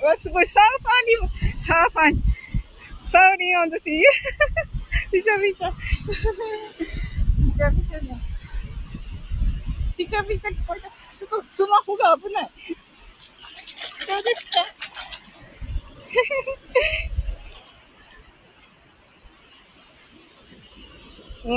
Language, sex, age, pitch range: Japanese, female, 20-39, 280-395 Hz